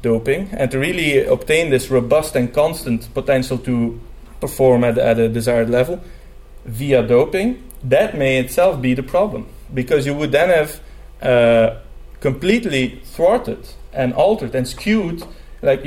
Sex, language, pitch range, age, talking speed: male, English, 120-150 Hz, 30-49, 145 wpm